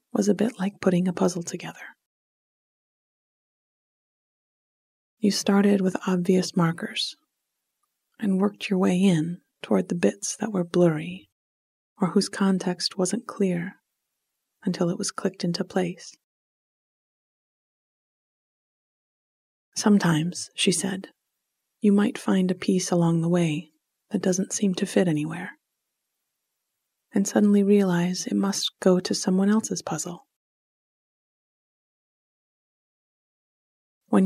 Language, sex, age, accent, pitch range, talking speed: English, female, 30-49, American, 175-200 Hz, 110 wpm